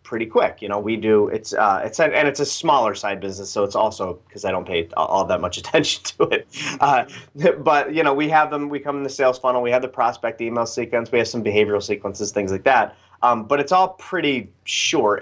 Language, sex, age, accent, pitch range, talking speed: English, male, 30-49, American, 100-135 Hz, 245 wpm